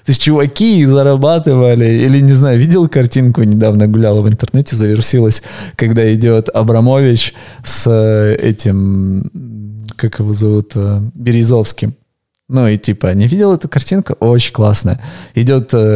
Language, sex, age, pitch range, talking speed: Russian, male, 20-39, 105-130 Hz, 125 wpm